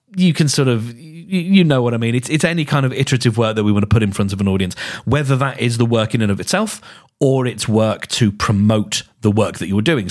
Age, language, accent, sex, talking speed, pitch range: 30-49, English, British, male, 265 wpm, 105-135 Hz